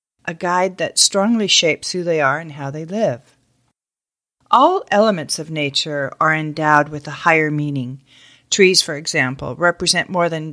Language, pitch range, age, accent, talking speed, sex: English, 155-195 Hz, 40-59, American, 160 wpm, female